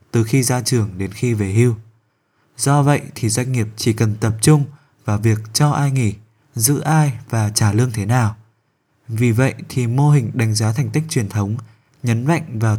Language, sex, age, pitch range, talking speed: Vietnamese, male, 20-39, 110-140 Hz, 200 wpm